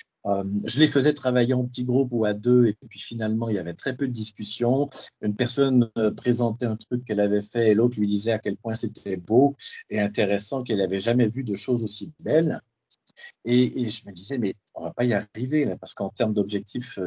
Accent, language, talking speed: French, French, 230 wpm